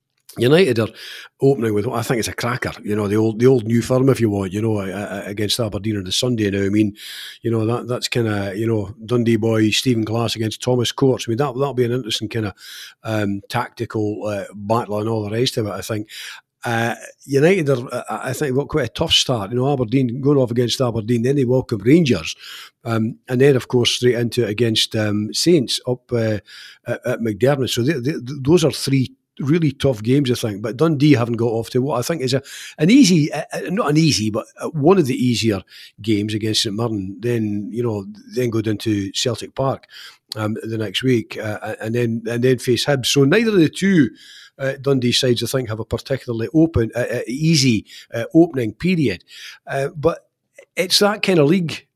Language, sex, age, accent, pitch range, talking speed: English, male, 40-59, British, 110-135 Hz, 215 wpm